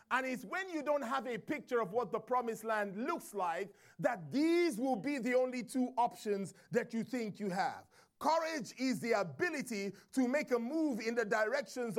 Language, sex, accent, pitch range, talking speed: English, male, Nigerian, 240-295 Hz, 195 wpm